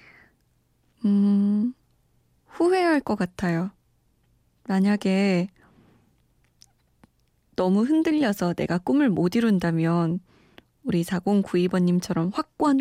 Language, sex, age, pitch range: Korean, female, 20-39, 185-240 Hz